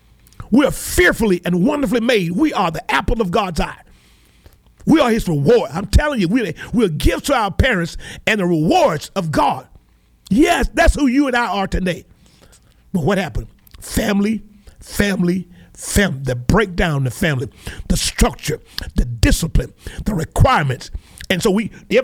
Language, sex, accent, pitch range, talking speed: English, male, American, 150-210 Hz, 165 wpm